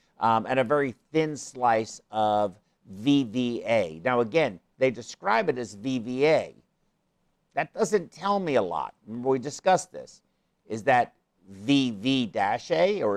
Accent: American